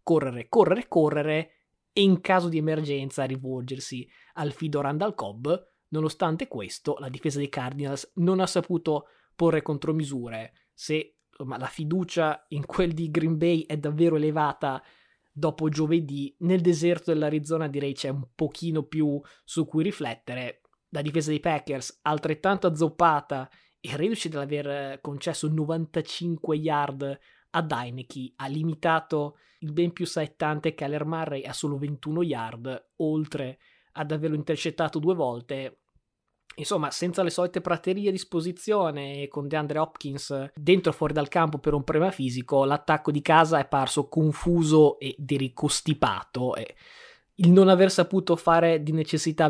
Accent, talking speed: native, 140 wpm